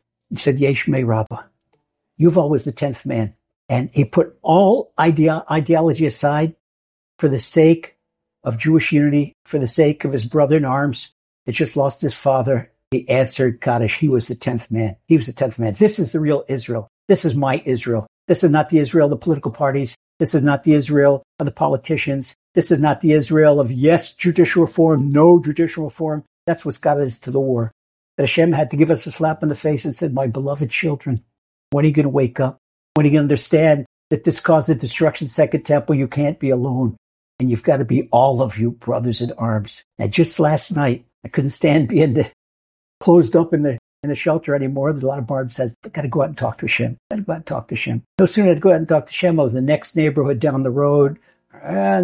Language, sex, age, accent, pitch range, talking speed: English, male, 60-79, American, 125-155 Hz, 230 wpm